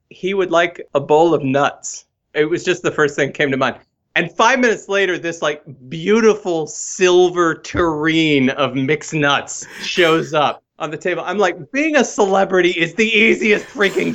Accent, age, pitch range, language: American, 40-59, 125-175 Hz, English